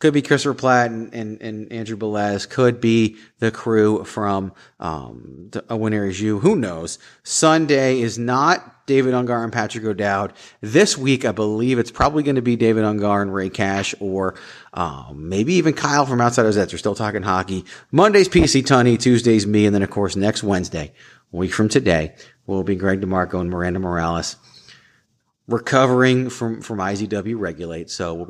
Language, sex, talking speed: English, male, 175 wpm